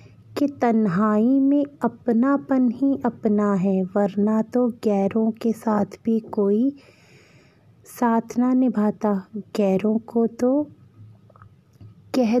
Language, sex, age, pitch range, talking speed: Hindi, female, 20-39, 205-250 Hz, 95 wpm